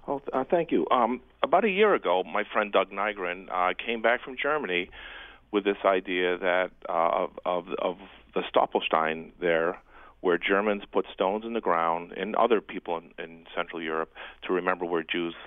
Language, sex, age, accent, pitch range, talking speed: English, male, 40-59, American, 85-110 Hz, 180 wpm